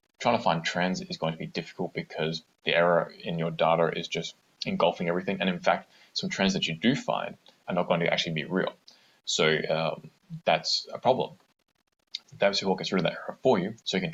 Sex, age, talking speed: male, 20-39, 220 wpm